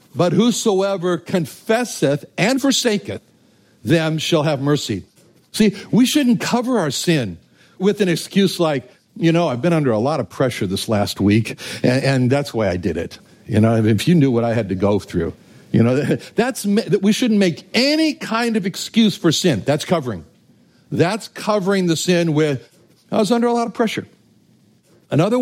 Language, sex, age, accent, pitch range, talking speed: English, male, 60-79, American, 150-205 Hz, 185 wpm